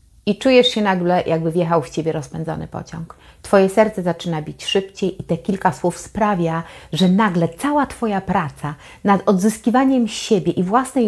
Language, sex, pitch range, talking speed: Polish, female, 170-235 Hz, 160 wpm